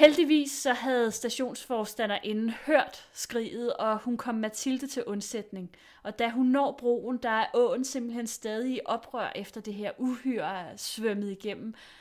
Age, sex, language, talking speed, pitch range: 30-49, female, Danish, 155 wpm, 200-245 Hz